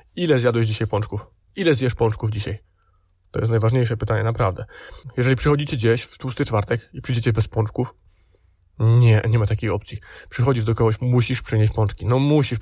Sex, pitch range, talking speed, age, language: male, 110-130 Hz, 170 wpm, 20-39, Polish